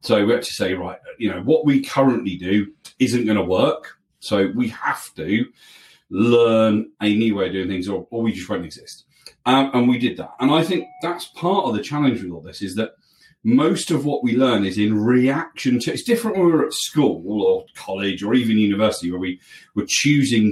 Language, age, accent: English, 40-59, British